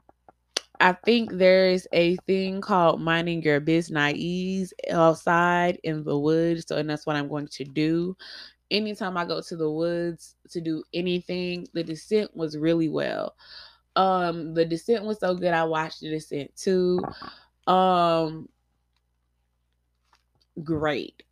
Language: English